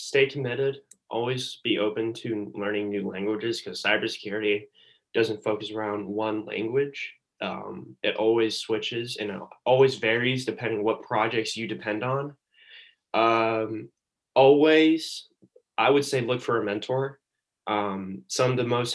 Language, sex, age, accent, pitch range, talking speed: English, male, 10-29, American, 105-120 Hz, 145 wpm